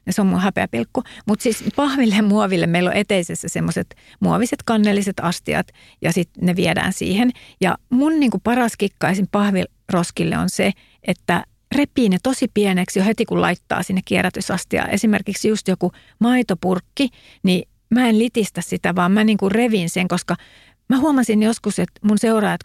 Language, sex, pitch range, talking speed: Finnish, female, 185-235 Hz, 160 wpm